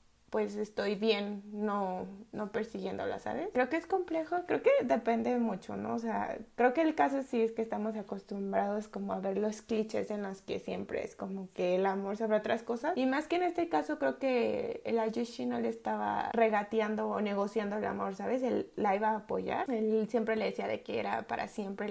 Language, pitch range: Spanish, 210-235 Hz